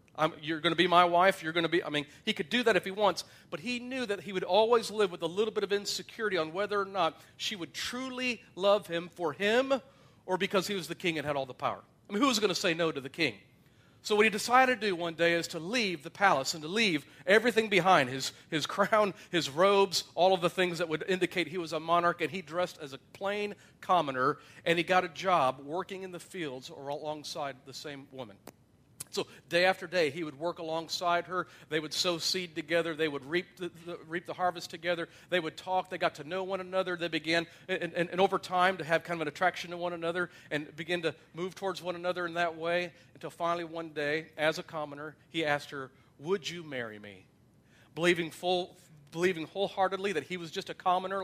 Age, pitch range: 40-59, 160-190 Hz